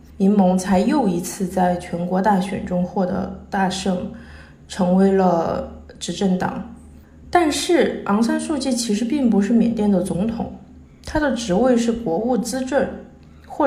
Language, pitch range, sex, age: Chinese, 190-250 Hz, female, 20-39